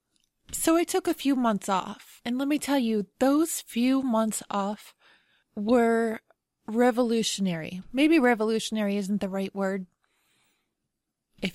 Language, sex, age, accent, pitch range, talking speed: English, female, 20-39, American, 190-225 Hz, 130 wpm